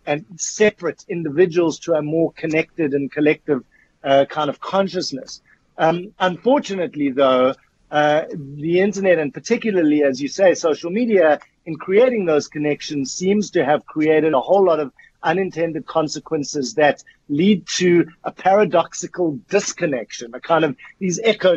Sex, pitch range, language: male, 145-180 Hz, English